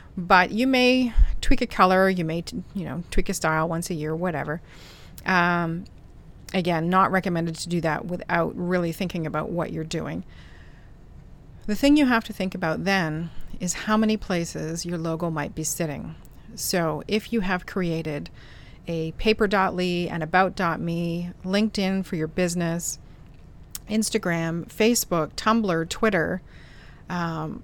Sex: female